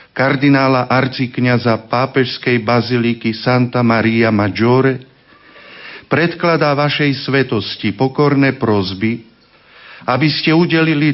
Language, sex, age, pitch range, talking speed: Slovak, male, 40-59, 125-150 Hz, 80 wpm